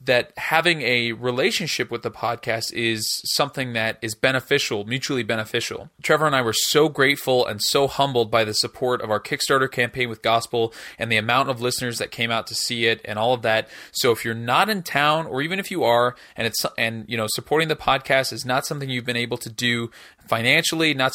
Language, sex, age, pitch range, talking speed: English, male, 20-39, 115-145 Hz, 215 wpm